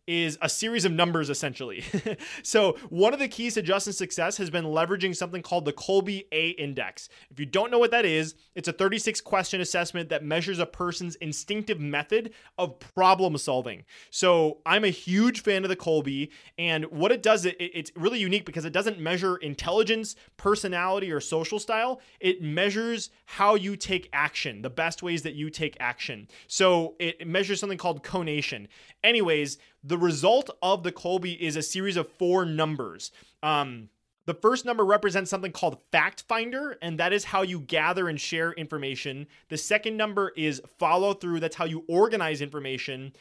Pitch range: 155-195 Hz